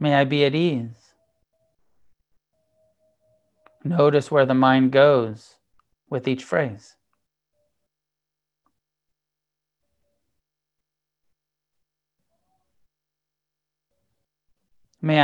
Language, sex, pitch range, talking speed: English, male, 130-155 Hz, 55 wpm